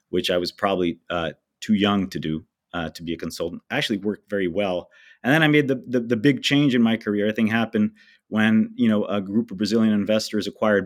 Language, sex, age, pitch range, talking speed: English, male, 30-49, 95-115 Hz, 245 wpm